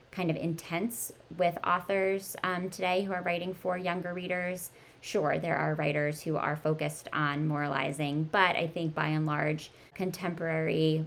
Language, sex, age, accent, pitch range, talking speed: English, female, 20-39, American, 150-185 Hz, 155 wpm